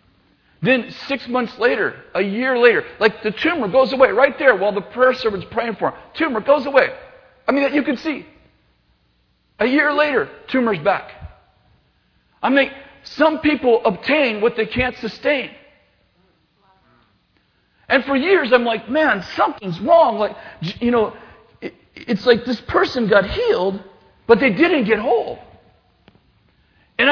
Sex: male